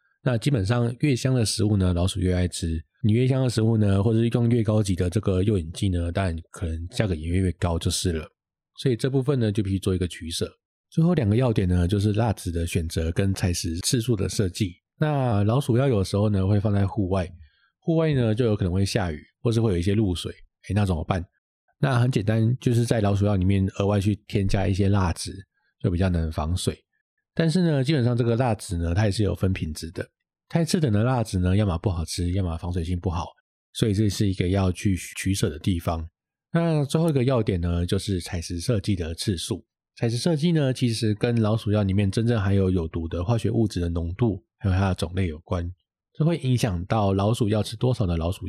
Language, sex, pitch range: Chinese, male, 90-120 Hz